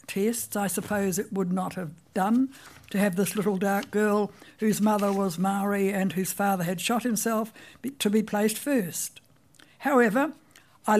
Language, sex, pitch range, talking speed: English, female, 185-220 Hz, 165 wpm